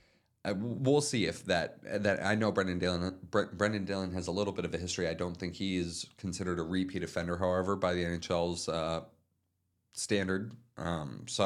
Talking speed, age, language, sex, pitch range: 195 wpm, 30-49, English, male, 85-100 Hz